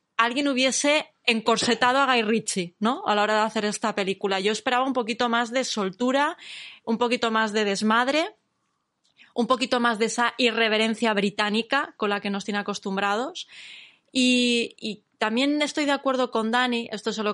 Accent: Spanish